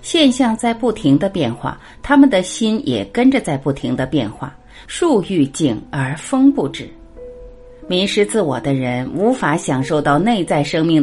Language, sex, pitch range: Chinese, female, 145-230 Hz